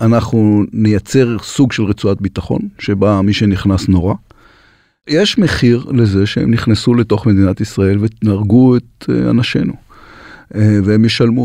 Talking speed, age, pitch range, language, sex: 120 wpm, 40-59, 95-120 Hz, Hebrew, male